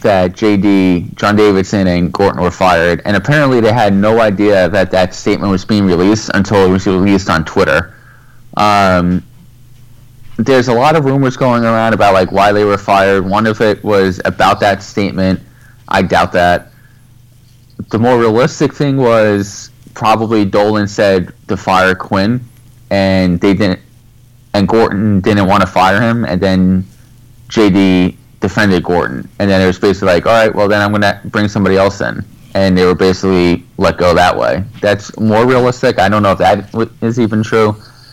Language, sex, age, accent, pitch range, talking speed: English, male, 30-49, American, 95-120 Hz, 175 wpm